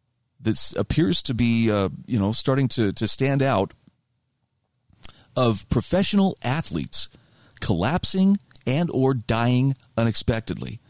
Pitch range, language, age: 115-150 Hz, English, 40-59